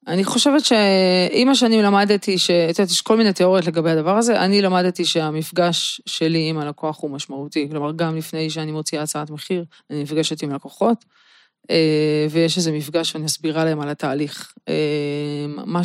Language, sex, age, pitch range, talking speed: Hebrew, female, 20-39, 150-185 Hz, 165 wpm